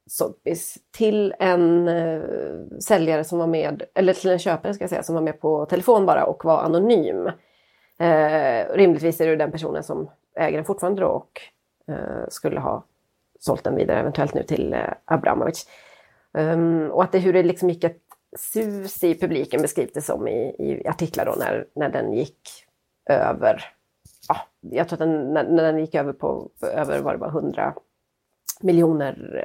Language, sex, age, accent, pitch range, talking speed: Swedish, female, 30-49, native, 155-185 Hz, 175 wpm